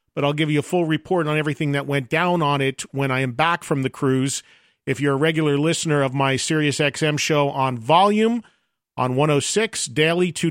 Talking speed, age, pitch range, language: 225 wpm, 40-59, 140-170 Hz, English